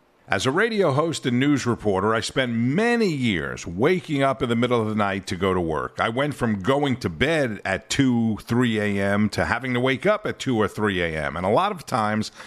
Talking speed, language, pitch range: 230 wpm, English, 100-145 Hz